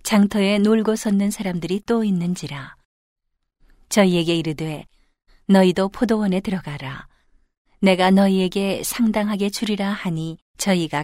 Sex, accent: female, native